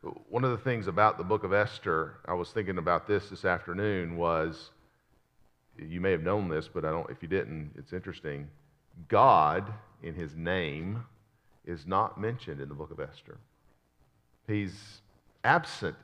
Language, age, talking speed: English, 50-69, 165 wpm